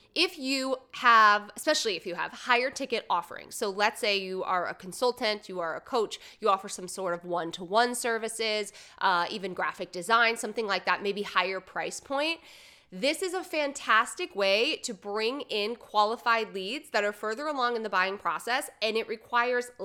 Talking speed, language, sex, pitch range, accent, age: 180 wpm, English, female, 190-255 Hz, American, 20-39